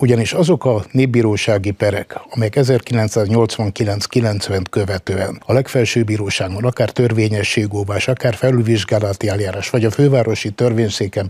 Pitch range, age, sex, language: 110-130 Hz, 60-79, male, Hungarian